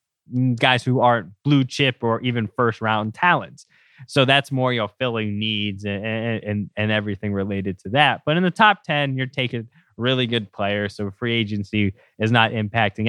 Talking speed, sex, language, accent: 185 wpm, male, English, American